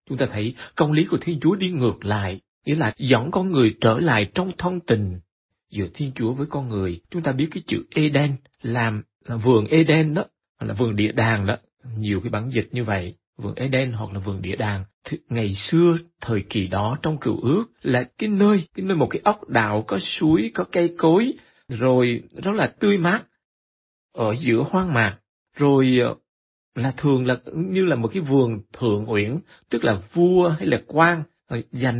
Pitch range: 105-160 Hz